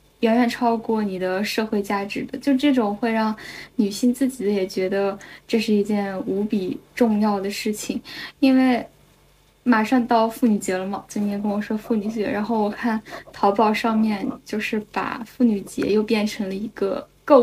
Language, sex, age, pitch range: Chinese, female, 10-29, 205-245 Hz